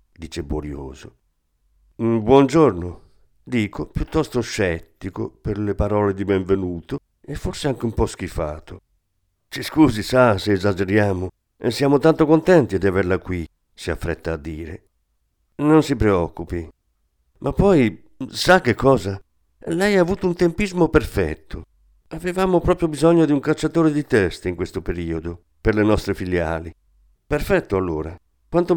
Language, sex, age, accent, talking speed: Italian, male, 50-69, native, 135 wpm